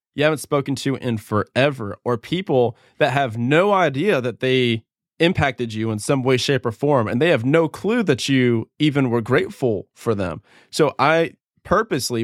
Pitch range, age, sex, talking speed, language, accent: 120-150 Hz, 20-39, male, 180 wpm, English, American